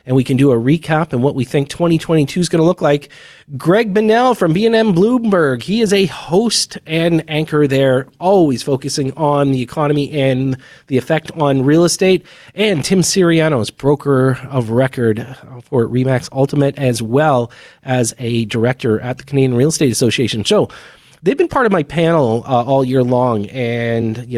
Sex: male